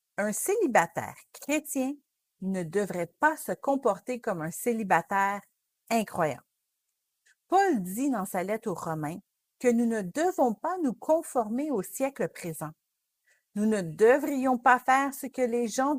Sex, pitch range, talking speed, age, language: female, 185-270 Hz, 145 wpm, 50-69, English